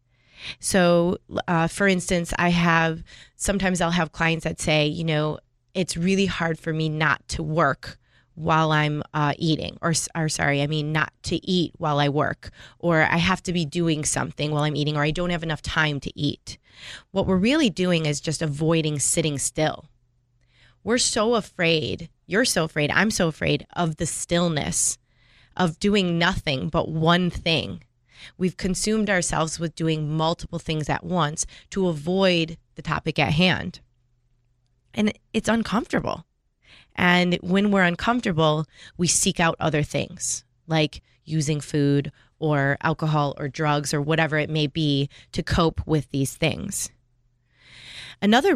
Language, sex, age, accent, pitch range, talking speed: English, female, 20-39, American, 145-175 Hz, 155 wpm